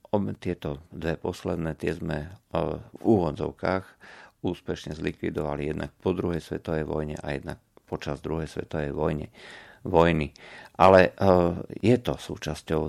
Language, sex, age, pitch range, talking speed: Slovak, male, 50-69, 75-90 Hz, 125 wpm